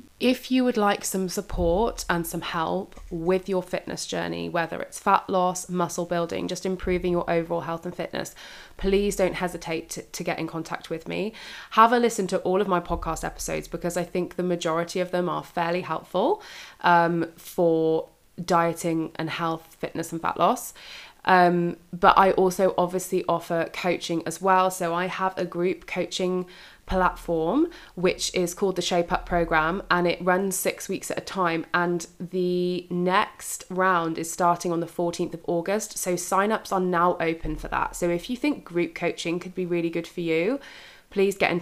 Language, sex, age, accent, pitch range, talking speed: English, female, 20-39, British, 170-185 Hz, 185 wpm